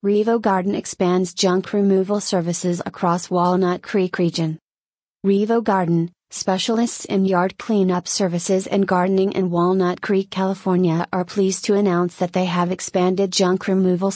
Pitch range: 180-200 Hz